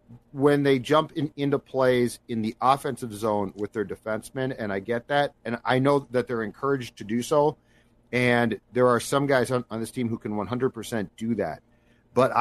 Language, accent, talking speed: English, American, 195 wpm